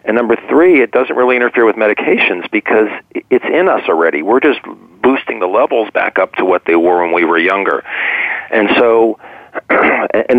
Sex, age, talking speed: male, 40-59, 185 wpm